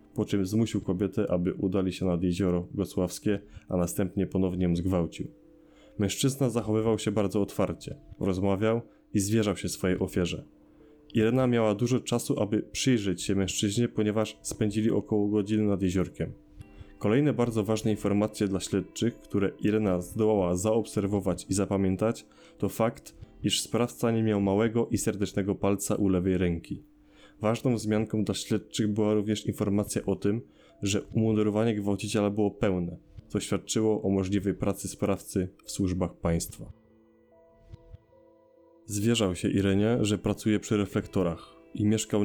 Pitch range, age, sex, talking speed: 95-110 Hz, 20-39, male, 140 wpm